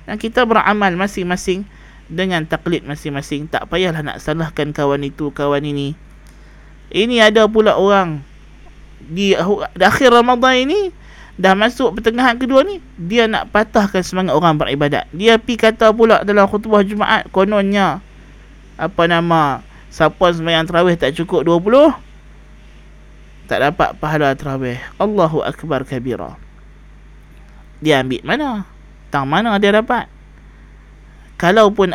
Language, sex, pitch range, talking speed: Malay, male, 150-210 Hz, 125 wpm